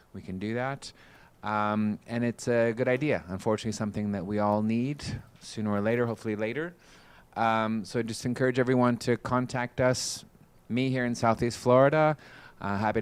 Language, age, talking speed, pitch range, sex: English, 30-49, 170 wpm, 100-120 Hz, male